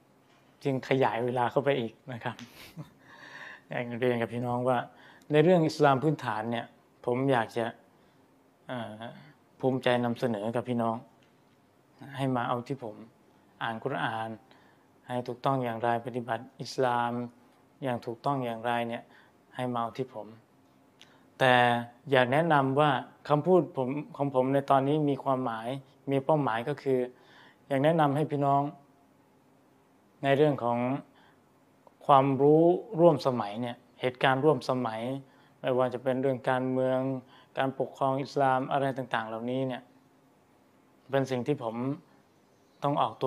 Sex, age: male, 20-39